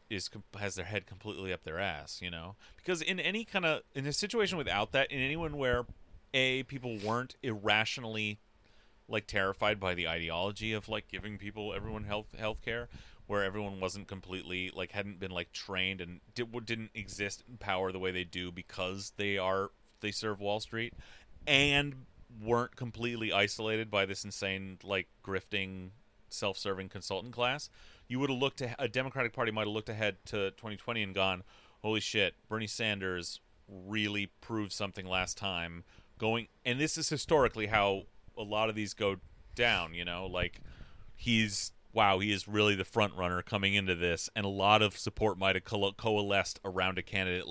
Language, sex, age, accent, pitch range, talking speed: English, male, 30-49, American, 95-110 Hz, 175 wpm